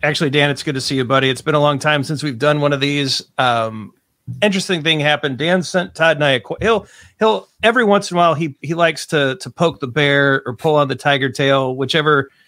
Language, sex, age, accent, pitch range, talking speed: English, male, 40-59, American, 135-175 Hz, 250 wpm